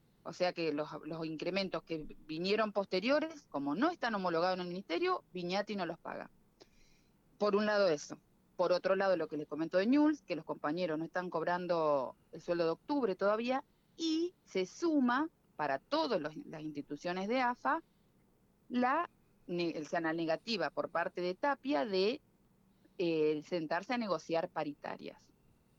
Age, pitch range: 30-49, 155-210 Hz